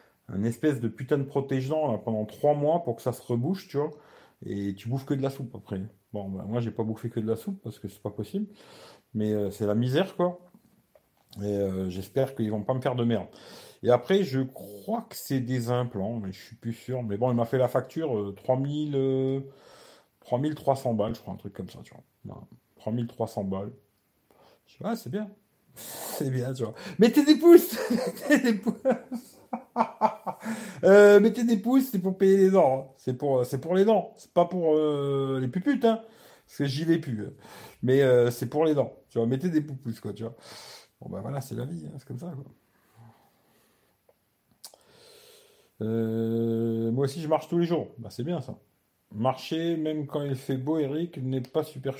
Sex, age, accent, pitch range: male, 40-59, French, 115-170 Hz